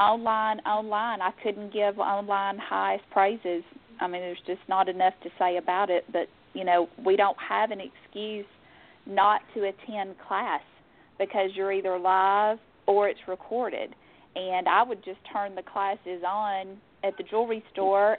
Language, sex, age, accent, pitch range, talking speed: English, female, 40-59, American, 185-215 Hz, 160 wpm